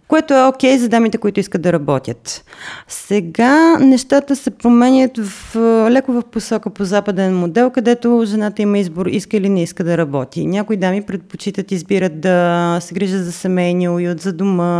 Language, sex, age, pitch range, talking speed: Bulgarian, female, 30-49, 180-240 Hz, 175 wpm